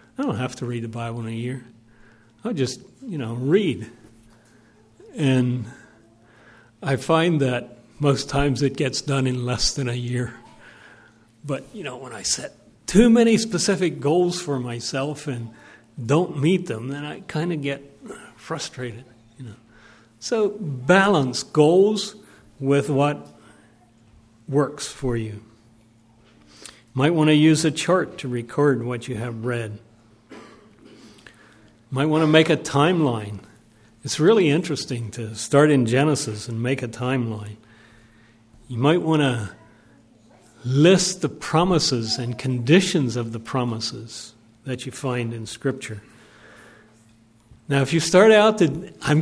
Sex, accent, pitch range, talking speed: male, American, 115-155 Hz, 140 wpm